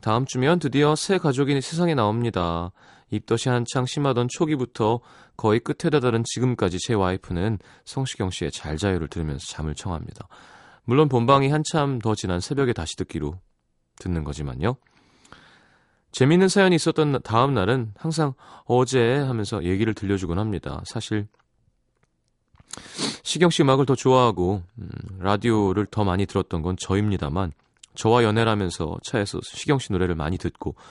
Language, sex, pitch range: Korean, male, 90-130 Hz